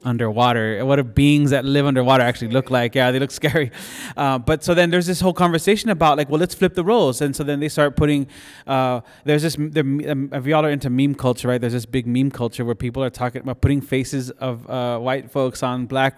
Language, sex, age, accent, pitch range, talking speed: English, male, 20-39, American, 125-145 Hz, 235 wpm